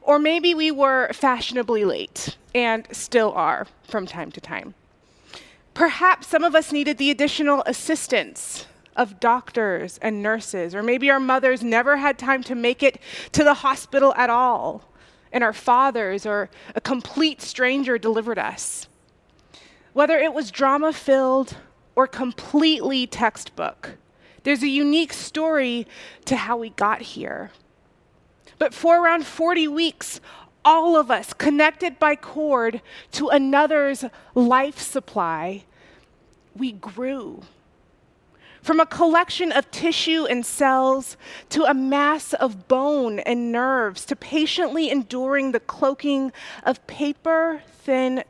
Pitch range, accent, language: 240-300 Hz, American, English